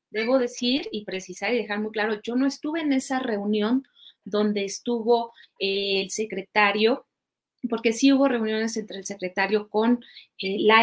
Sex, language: female, Spanish